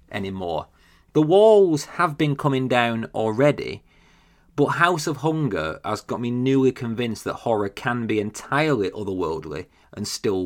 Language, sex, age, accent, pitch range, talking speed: English, male, 30-49, British, 100-135 Hz, 145 wpm